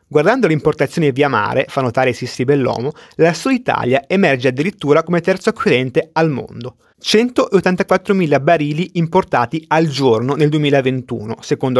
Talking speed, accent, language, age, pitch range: 135 wpm, native, Italian, 30-49, 130-175 Hz